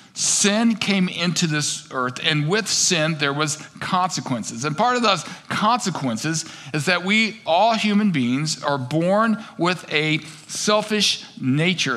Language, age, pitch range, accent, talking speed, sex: English, 50-69, 145-185 Hz, American, 140 wpm, male